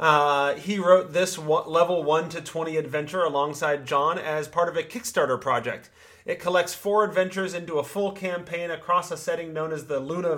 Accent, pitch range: American, 145-190 Hz